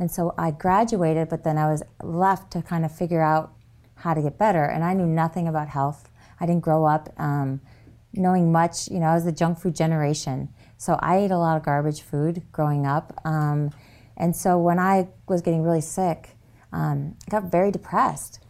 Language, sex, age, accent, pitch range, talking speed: English, female, 30-49, American, 155-200 Hz, 205 wpm